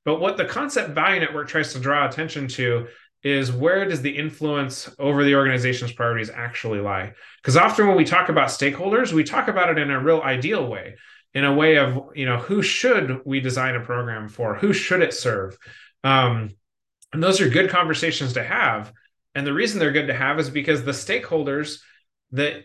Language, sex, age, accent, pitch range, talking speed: English, male, 30-49, American, 120-150 Hz, 200 wpm